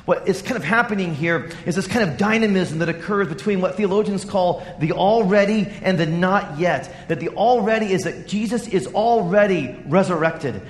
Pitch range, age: 185-230 Hz, 40-59